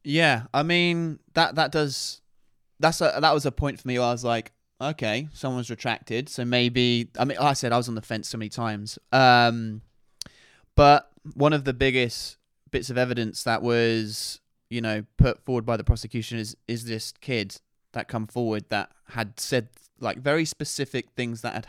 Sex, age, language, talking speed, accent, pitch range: male, 20-39, English, 195 wpm, British, 115-145 Hz